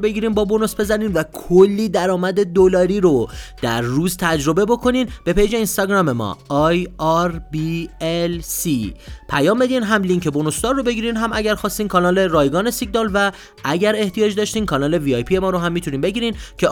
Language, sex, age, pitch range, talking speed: Persian, male, 30-49, 140-210 Hz, 170 wpm